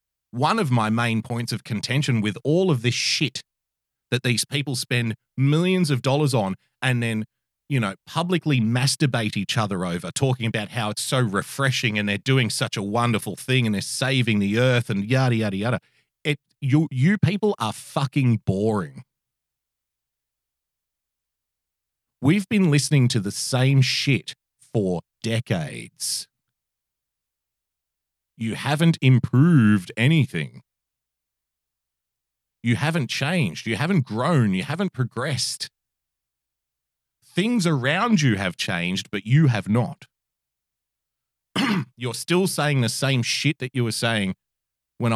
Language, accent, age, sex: English, Australian, 40-59, male